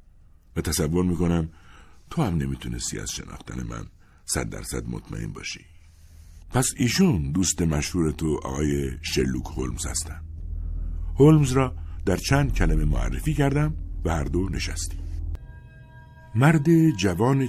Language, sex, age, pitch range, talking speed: Persian, male, 60-79, 80-110 Hz, 120 wpm